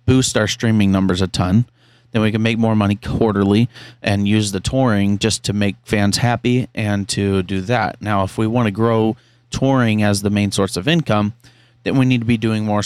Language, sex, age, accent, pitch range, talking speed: English, male, 30-49, American, 100-120 Hz, 215 wpm